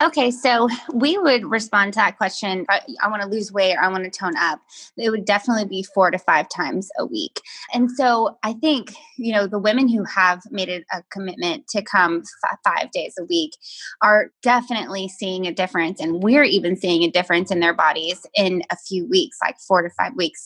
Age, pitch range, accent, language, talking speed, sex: 20-39, 185-235 Hz, American, English, 210 wpm, female